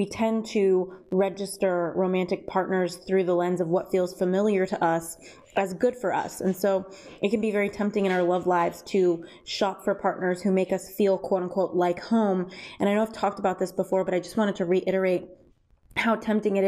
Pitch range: 180-200 Hz